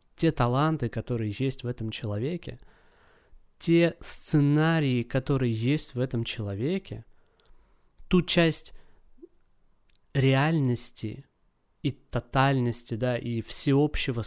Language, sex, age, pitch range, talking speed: Russian, male, 20-39, 115-145 Hz, 95 wpm